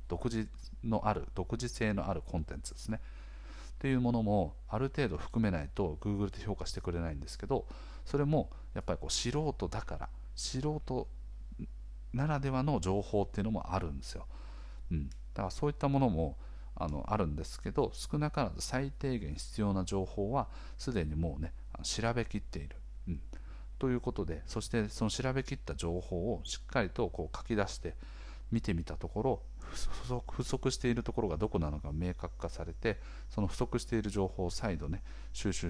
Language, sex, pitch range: Japanese, male, 75-110 Hz